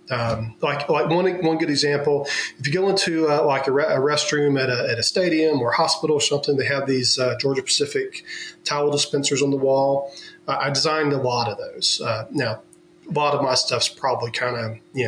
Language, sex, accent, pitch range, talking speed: English, male, American, 130-155 Hz, 225 wpm